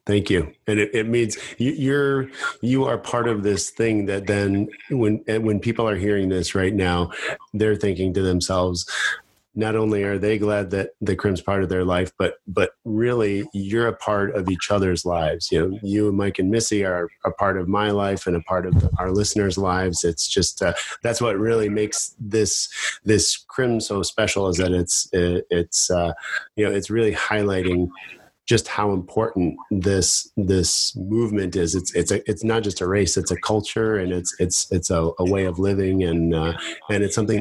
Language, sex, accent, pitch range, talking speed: English, male, American, 90-105 Hz, 195 wpm